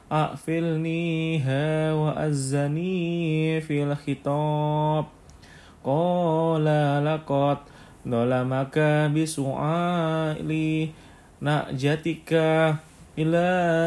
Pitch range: 140-160 Hz